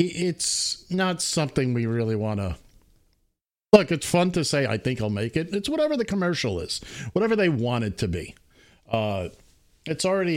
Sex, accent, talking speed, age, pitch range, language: male, American, 180 wpm, 50-69, 105-140 Hz, English